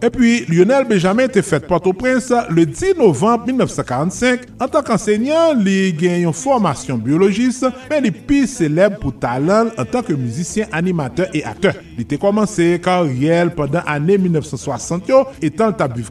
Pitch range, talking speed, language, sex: 150-235 Hz, 160 wpm, French, male